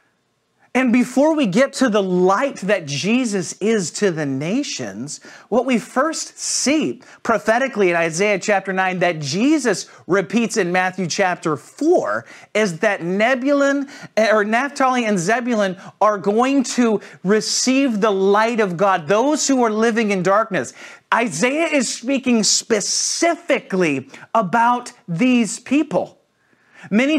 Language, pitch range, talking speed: English, 195-255 Hz, 130 wpm